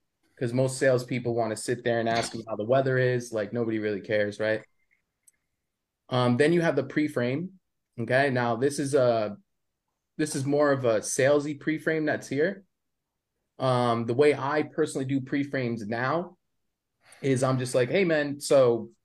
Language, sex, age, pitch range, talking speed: English, male, 20-39, 120-150 Hz, 170 wpm